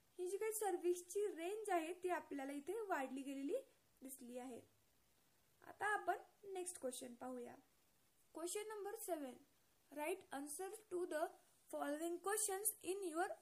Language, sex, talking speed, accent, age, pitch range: Marathi, female, 125 wpm, native, 20-39, 305-390 Hz